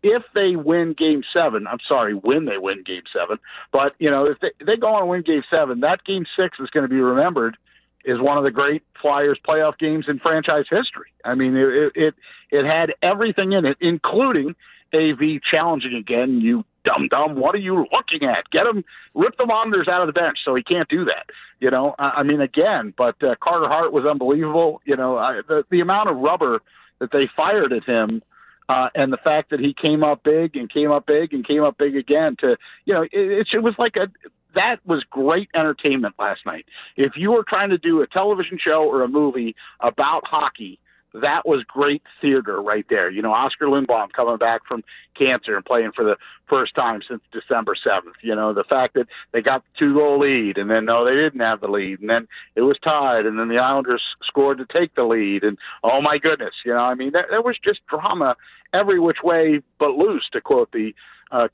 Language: English